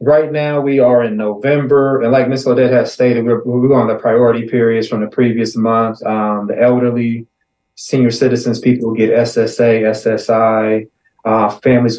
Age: 20-39